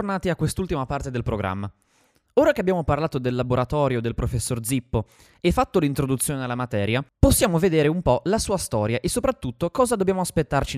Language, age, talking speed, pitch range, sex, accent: Italian, 20-39, 185 wpm, 115-185 Hz, male, native